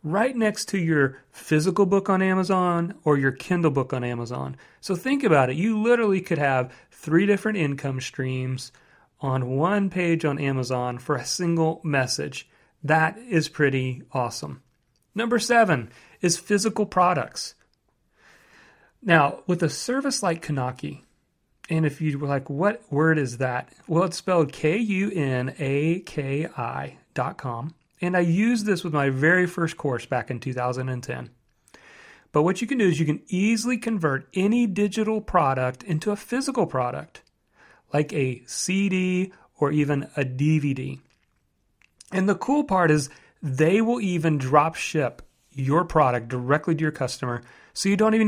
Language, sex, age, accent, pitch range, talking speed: English, male, 40-59, American, 135-190 Hz, 150 wpm